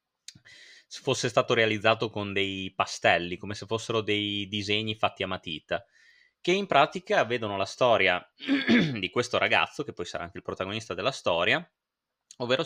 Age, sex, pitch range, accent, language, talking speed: 20-39, male, 95-120 Hz, native, Italian, 150 wpm